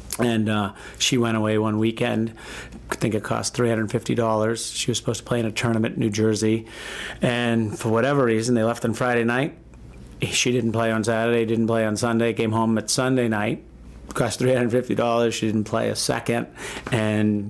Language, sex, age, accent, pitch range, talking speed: English, male, 40-59, American, 110-120 Hz, 185 wpm